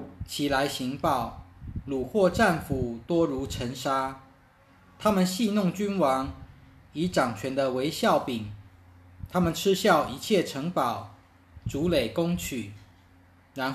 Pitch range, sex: 100-165 Hz, male